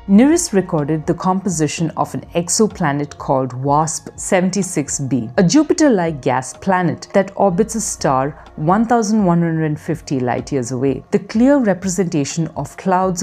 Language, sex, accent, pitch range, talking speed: English, female, Indian, 145-195 Hz, 115 wpm